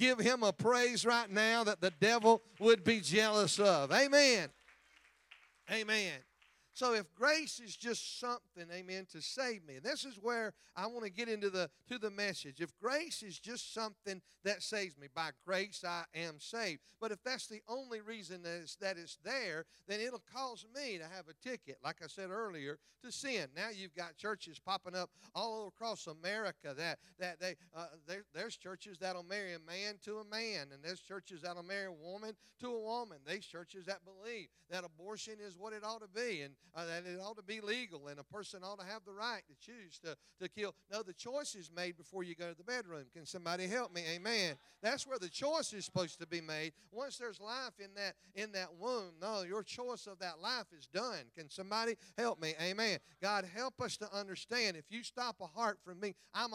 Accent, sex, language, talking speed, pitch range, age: American, male, English, 210 wpm, 175-225 Hz, 40-59